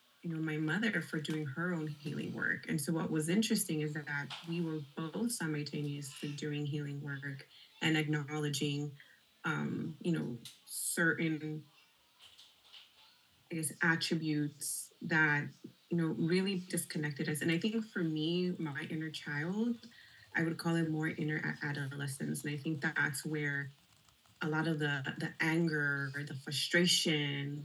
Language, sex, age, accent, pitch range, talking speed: English, female, 20-39, American, 150-175 Hz, 145 wpm